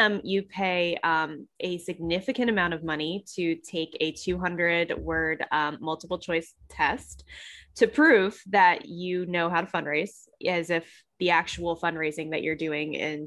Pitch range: 165-210 Hz